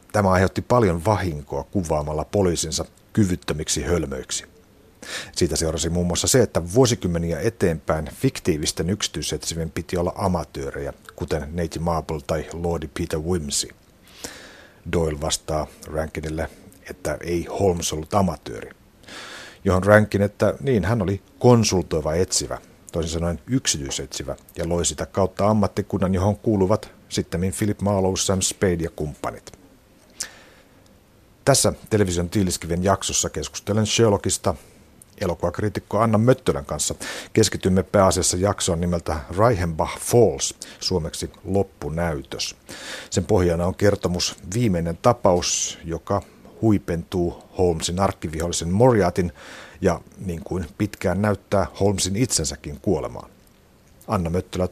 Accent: native